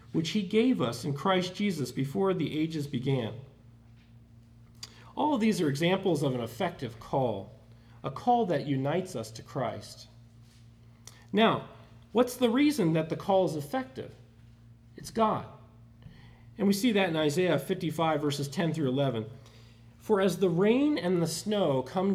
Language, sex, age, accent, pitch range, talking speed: English, male, 40-59, American, 115-185 Hz, 155 wpm